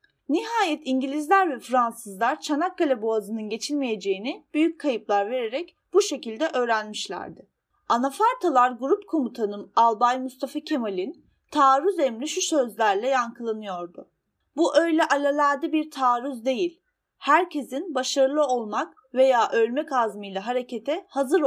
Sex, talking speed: female, 105 wpm